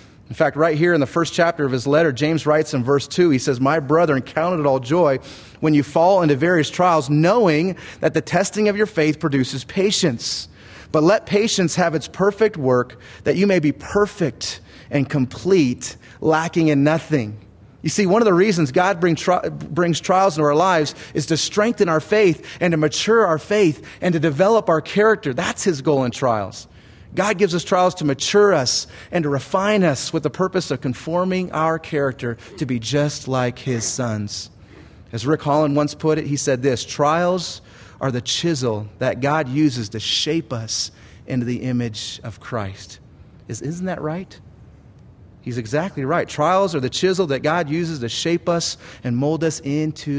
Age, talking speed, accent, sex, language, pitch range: 30-49, 185 wpm, American, male, English, 125-170 Hz